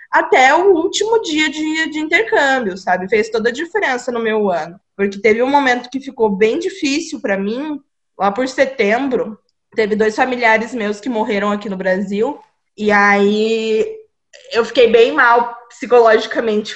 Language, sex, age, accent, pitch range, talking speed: Portuguese, female, 20-39, Brazilian, 205-245 Hz, 160 wpm